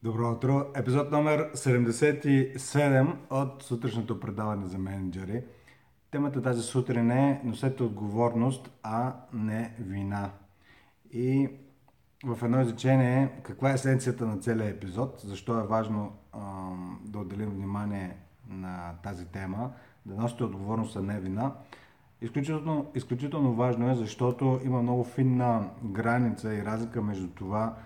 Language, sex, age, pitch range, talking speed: Bulgarian, male, 30-49, 100-125 Hz, 125 wpm